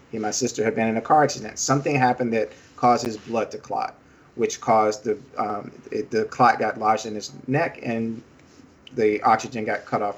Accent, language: American, English